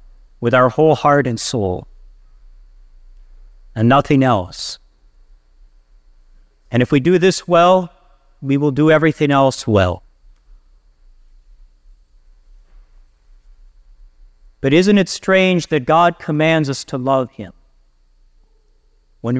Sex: male